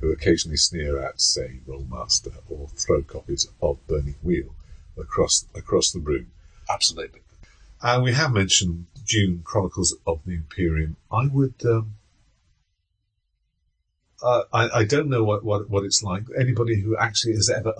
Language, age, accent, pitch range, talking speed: English, 50-69, British, 80-105 Hz, 150 wpm